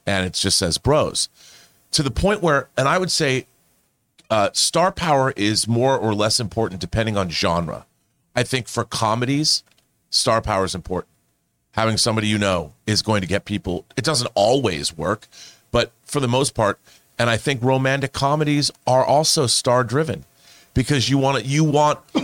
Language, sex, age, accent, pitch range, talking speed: English, male, 40-59, American, 105-140 Hz, 175 wpm